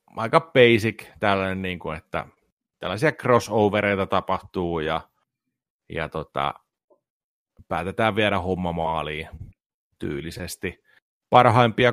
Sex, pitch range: male, 85-105 Hz